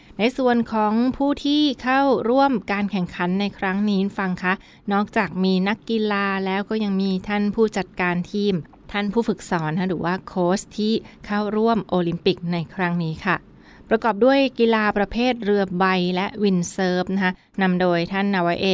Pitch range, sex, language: 180-210 Hz, female, Thai